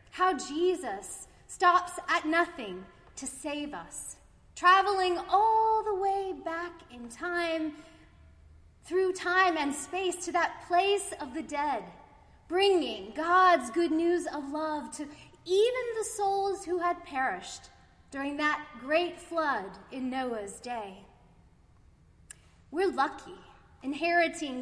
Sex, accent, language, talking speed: female, American, English, 115 wpm